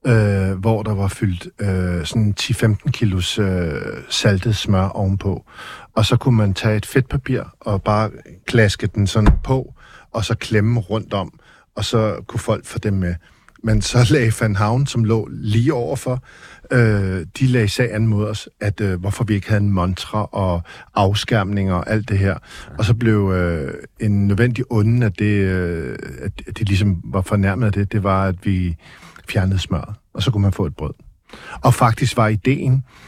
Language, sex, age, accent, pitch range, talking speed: Danish, male, 50-69, native, 95-115 Hz, 185 wpm